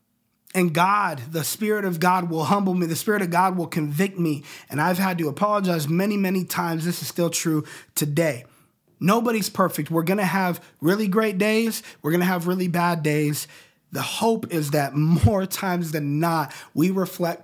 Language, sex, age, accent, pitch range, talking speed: English, male, 20-39, American, 160-215 Hz, 190 wpm